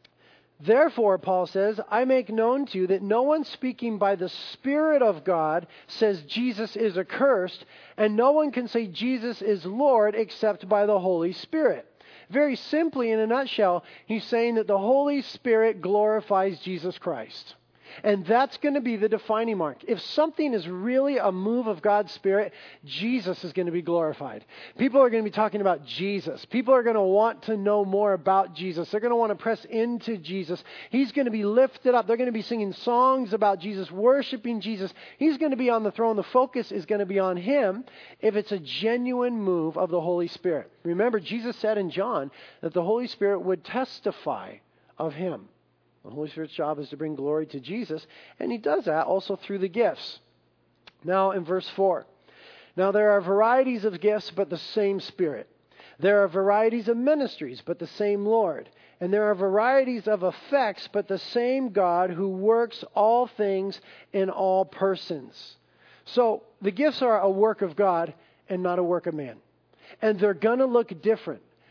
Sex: male